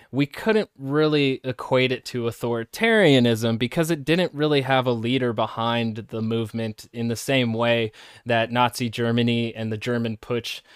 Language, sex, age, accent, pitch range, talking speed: English, male, 20-39, American, 115-135 Hz, 155 wpm